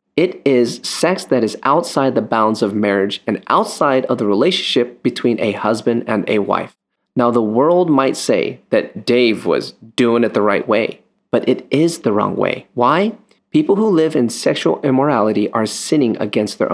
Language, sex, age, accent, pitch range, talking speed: English, male, 30-49, American, 110-155 Hz, 185 wpm